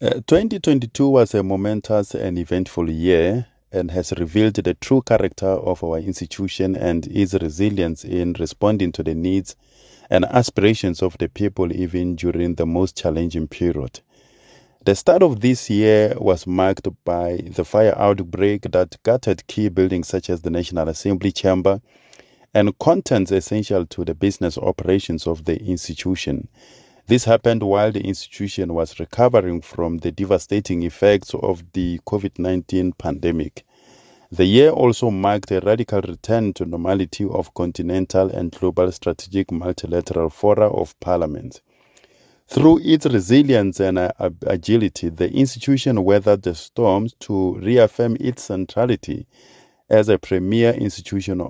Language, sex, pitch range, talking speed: English, male, 90-105 Hz, 135 wpm